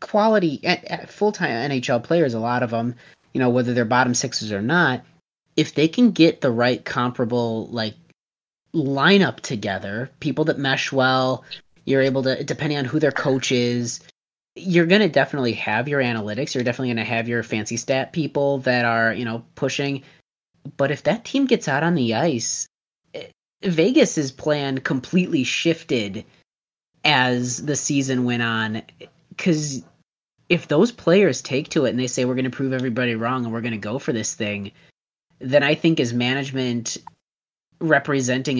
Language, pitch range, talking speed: English, 120-160 Hz, 170 wpm